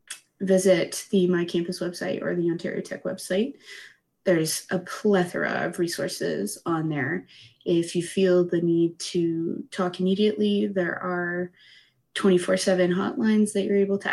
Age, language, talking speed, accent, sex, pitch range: 20-39, English, 145 wpm, American, female, 180-200 Hz